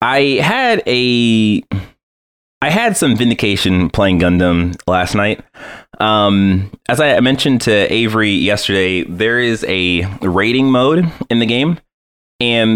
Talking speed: 125 wpm